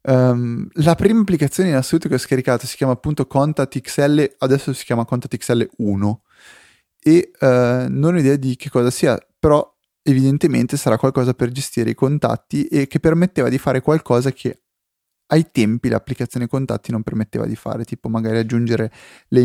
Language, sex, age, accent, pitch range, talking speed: Italian, male, 30-49, native, 120-145 Hz, 155 wpm